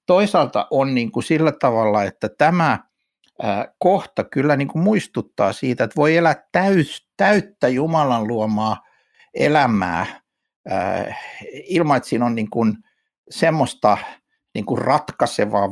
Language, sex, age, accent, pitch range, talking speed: Finnish, male, 60-79, native, 115-170 Hz, 120 wpm